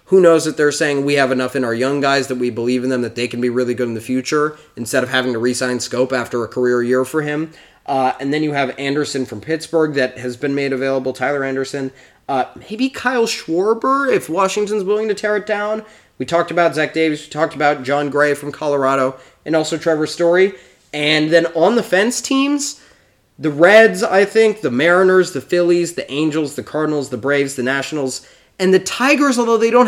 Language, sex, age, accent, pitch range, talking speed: English, male, 20-39, American, 130-175 Hz, 215 wpm